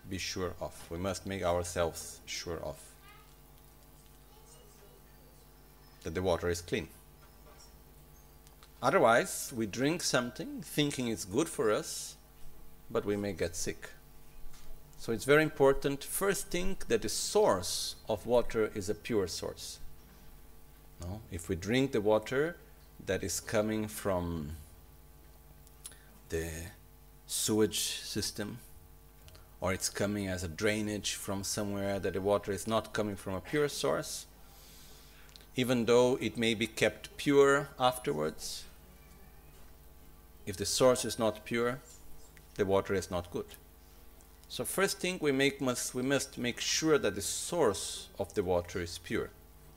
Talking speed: 130 wpm